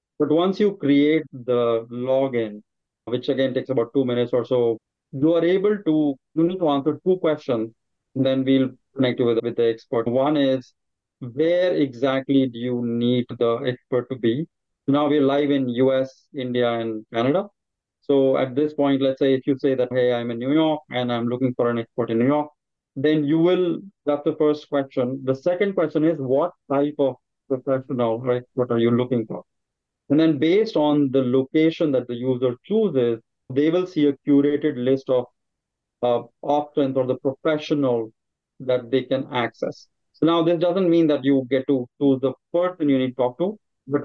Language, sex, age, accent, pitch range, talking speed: English, male, 30-49, Indian, 125-150 Hz, 190 wpm